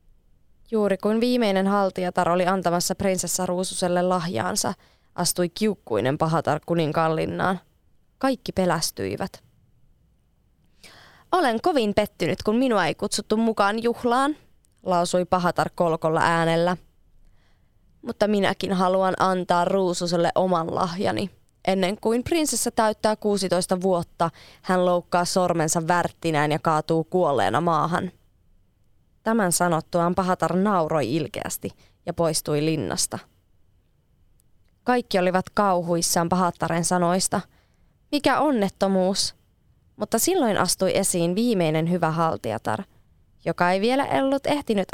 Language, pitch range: Finnish, 165-195 Hz